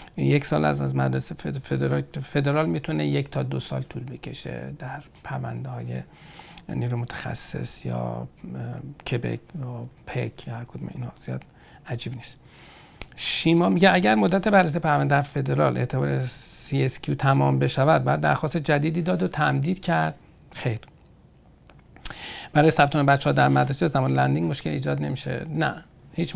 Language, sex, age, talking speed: Persian, male, 50-69, 135 wpm